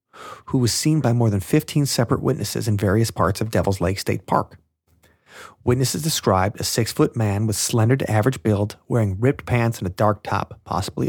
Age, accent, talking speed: 30-49, American, 190 wpm